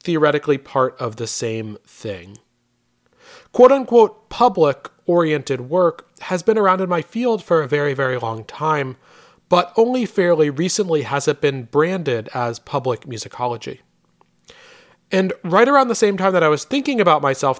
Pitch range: 125-175 Hz